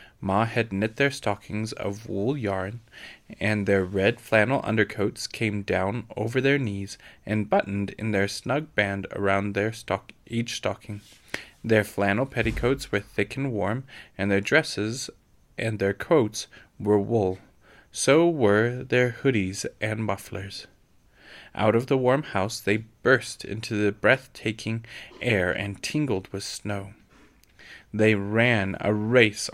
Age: 20-39